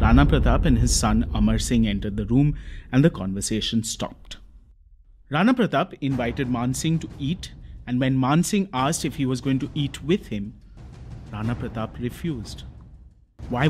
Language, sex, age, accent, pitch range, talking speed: English, male, 30-49, Indian, 110-160 Hz, 165 wpm